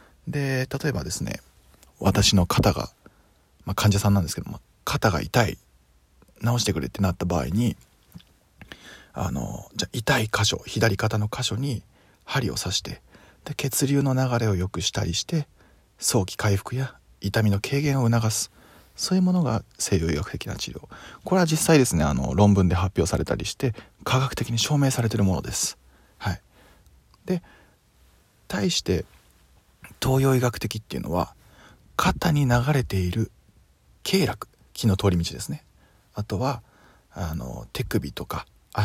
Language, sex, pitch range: Japanese, male, 100-145 Hz